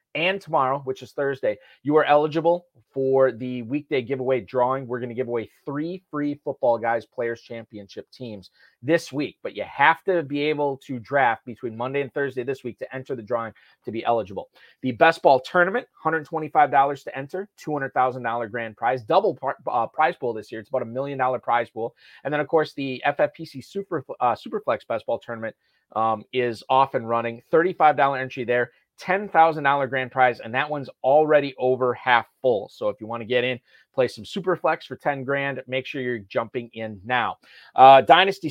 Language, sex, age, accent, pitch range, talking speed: English, male, 30-49, American, 125-150 Hz, 190 wpm